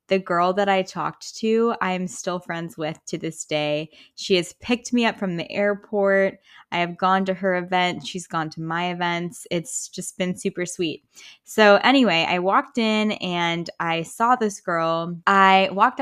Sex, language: female, English